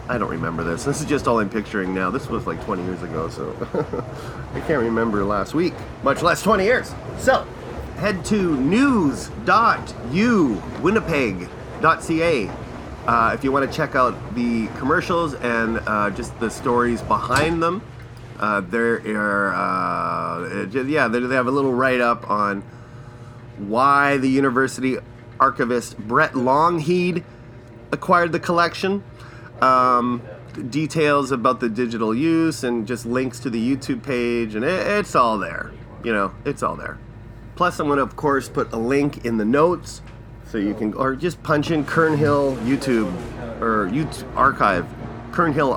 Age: 30-49